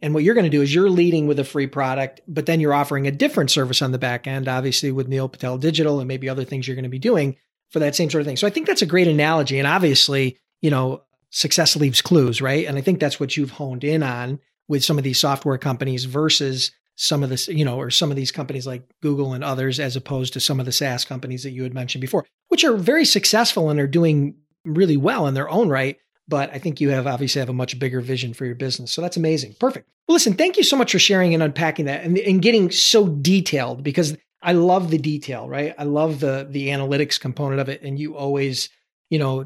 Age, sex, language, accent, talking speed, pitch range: 40-59, male, English, American, 255 wpm, 135-160 Hz